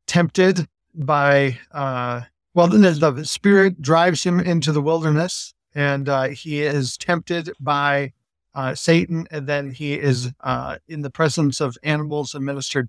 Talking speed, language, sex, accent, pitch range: 140 wpm, English, male, American, 135-160 Hz